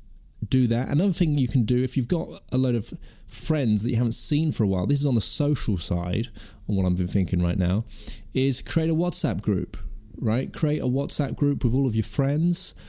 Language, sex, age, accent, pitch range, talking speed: English, male, 30-49, British, 100-130 Hz, 230 wpm